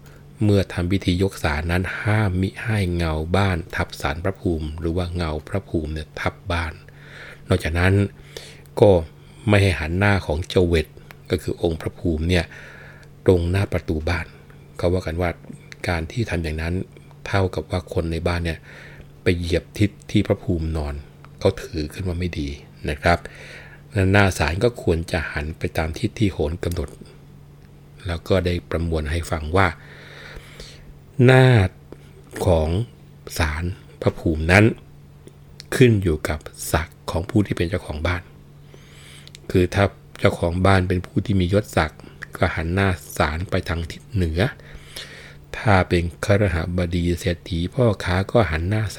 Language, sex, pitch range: Thai, male, 80-95 Hz